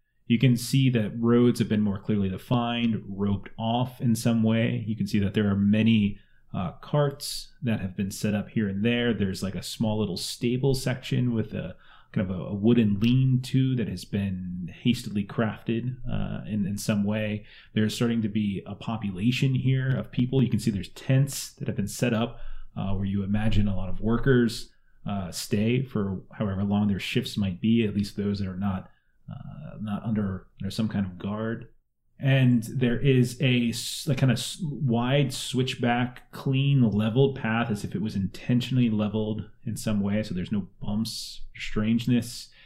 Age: 30-49